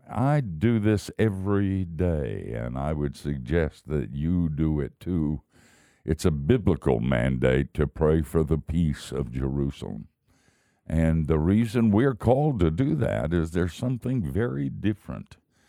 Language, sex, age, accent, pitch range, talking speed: English, male, 60-79, American, 70-90 Hz, 145 wpm